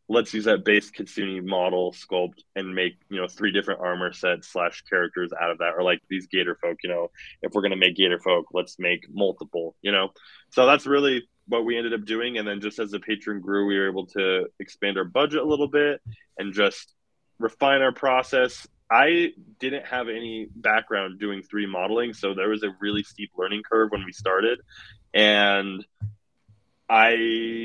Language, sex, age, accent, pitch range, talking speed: English, male, 20-39, American, 100-120 Hz, 195 wpm